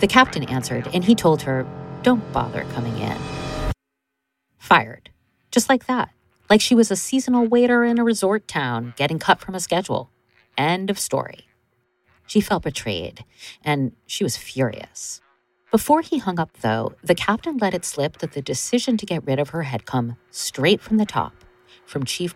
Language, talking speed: English, 175 wpm